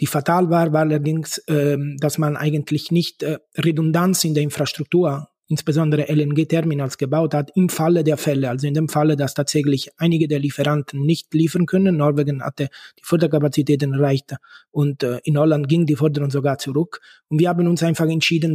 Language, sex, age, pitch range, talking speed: German, male, 20-39, 150-170 Hz, 180 wpm